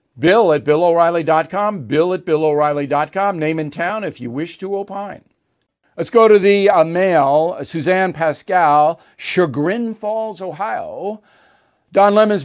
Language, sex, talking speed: English, male, 135 wpm